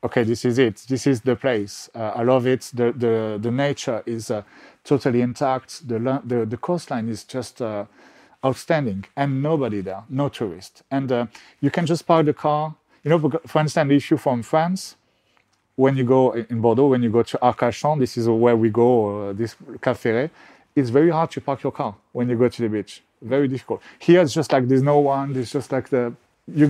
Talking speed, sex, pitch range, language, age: 215 wpm, male, 115-140 Hz, English, 40-59